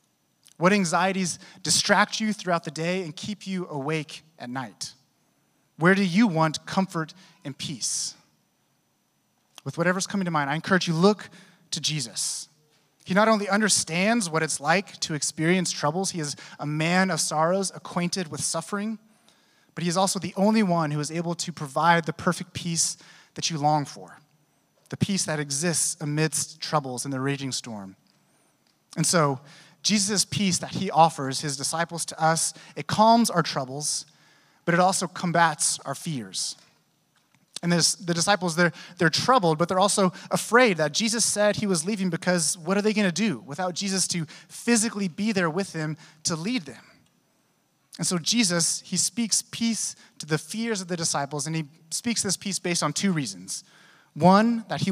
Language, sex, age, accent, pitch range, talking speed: English, male, 30-49, American, 155-195 Hz, 175 wpm